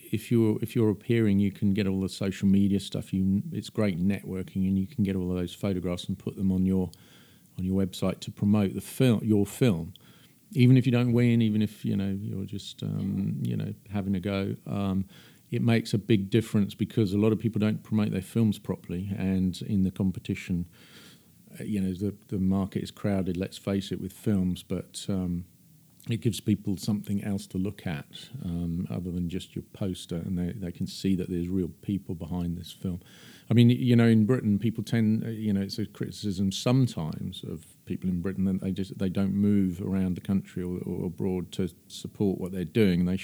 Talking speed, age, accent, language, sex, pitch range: 215 wpm, 40-59, British, English, male, 95-110 Hz